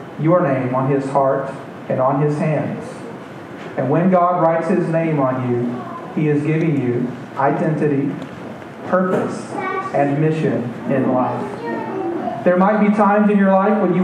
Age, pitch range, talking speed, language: 40-59, 140-185 Hz, 155 wpm, English